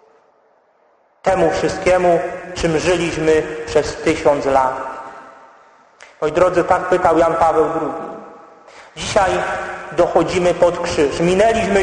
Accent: native